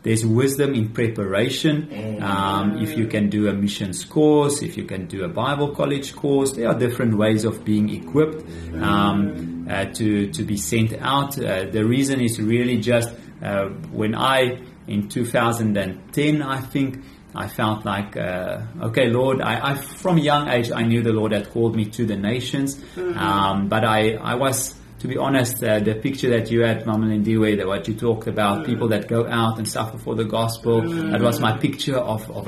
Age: 30-49